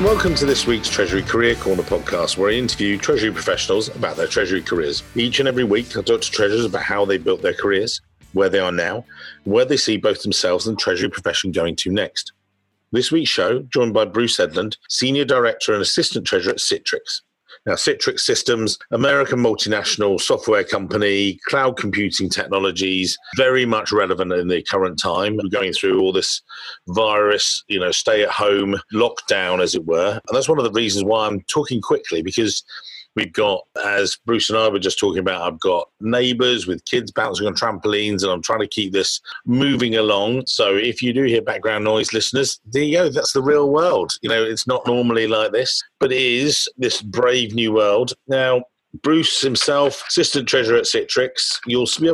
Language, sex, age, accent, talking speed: English, male, 40-59, British, 195 wpm